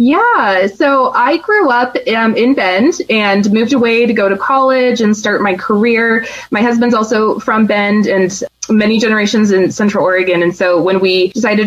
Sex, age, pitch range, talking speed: female, 20-39, 185-230 Hz, 180 wpm